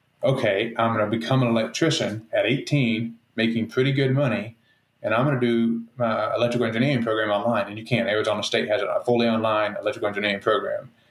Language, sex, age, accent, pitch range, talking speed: English, male, 30-49, American, 110-125 Hz, 190 wpm